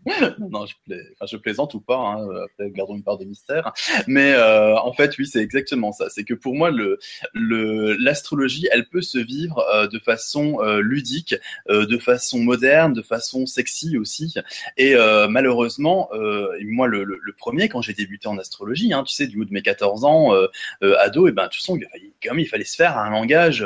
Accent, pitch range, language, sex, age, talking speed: French, 110-175 Hz, French, male, 20-39, 220 wpm